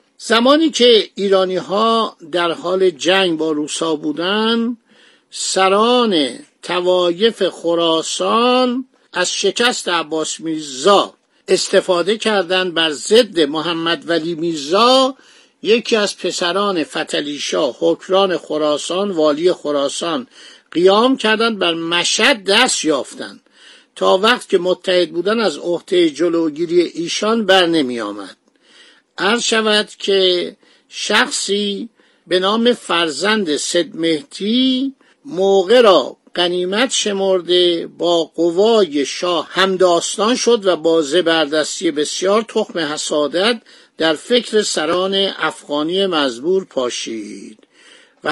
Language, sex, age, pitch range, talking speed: Persian, male, 50-69, 170-225 Hz, 100 wpm